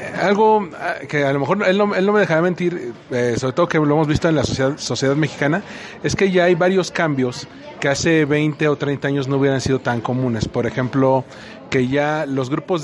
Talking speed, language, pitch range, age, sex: 215 wpm, Spanish, 130-155 Hz, 40-59, male